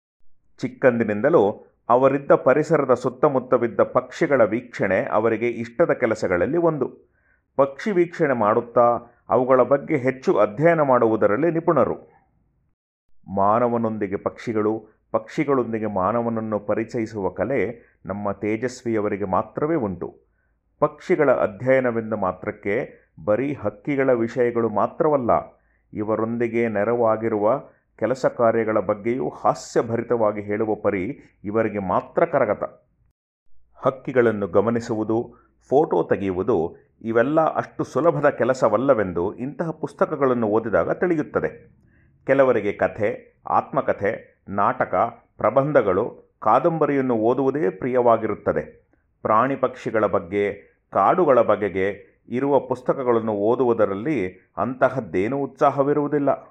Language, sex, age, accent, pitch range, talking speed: Kannada, male, 30-49, native, 105-135 Hz, 80 wpm